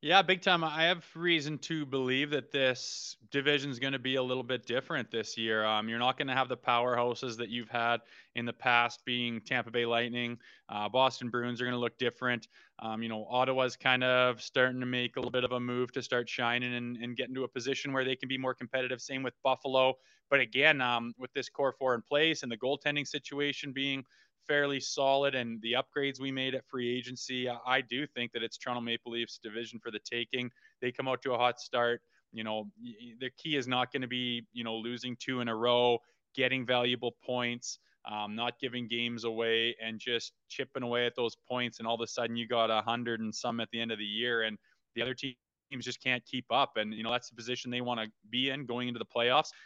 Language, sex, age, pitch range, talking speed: English, male, 20-39, 120-130 Hz, 235 wpm